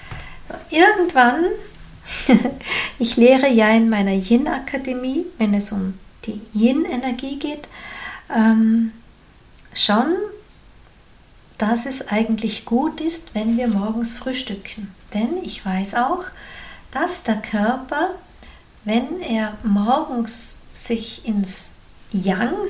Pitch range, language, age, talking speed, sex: 215-255 Hz, German, 50-69, 100 wpm, female